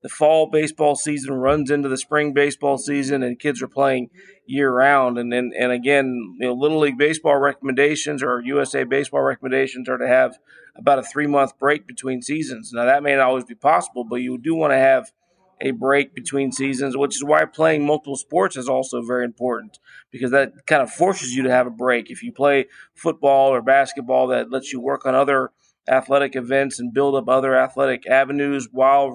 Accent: American